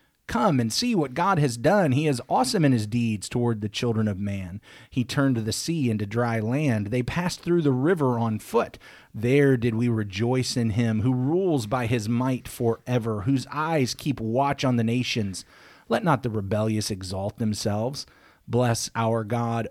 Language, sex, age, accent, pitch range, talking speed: English, male, 30-49, American, 110-145 Hz, 185 wpm